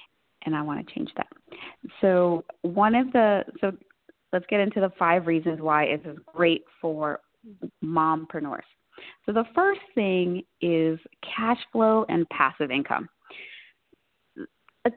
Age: 30-49